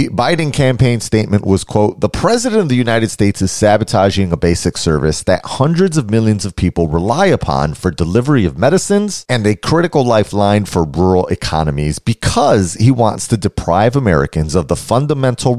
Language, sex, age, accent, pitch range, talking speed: English, male, 30-49, American, 85-130 Hz, 170 wpm